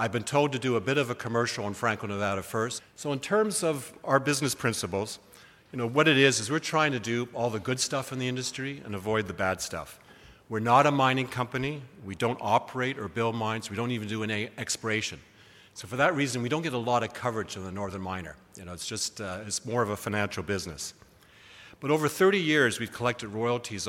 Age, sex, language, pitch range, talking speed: 50-69, male, English, 100-130 Hz, 235 wpm